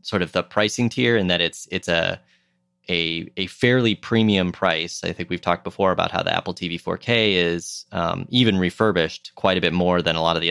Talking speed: 225 wpm